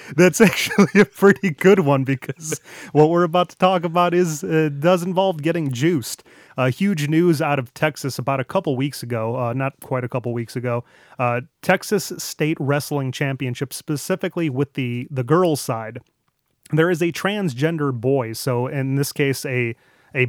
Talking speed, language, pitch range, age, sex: 180 wpm, English, 125-150 Hz, 30-49, male